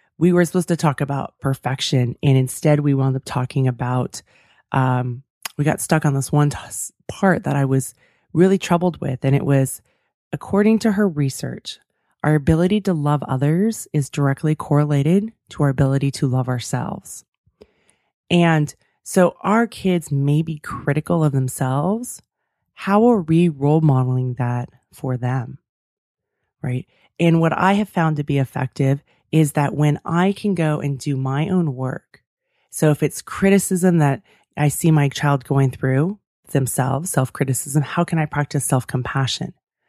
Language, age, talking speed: English, 20-39, 155 wpm